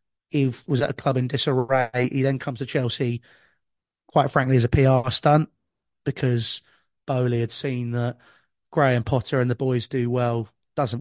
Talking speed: 170 wpm